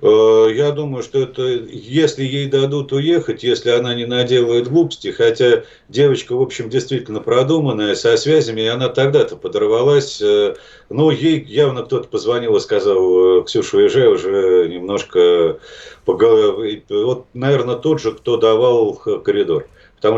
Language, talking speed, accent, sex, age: Russian, 135 wpm, native, male, 50-69